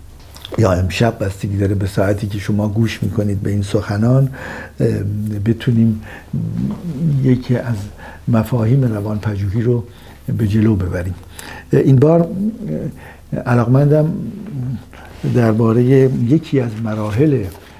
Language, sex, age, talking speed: Persian, male, 60-79, 100 wpm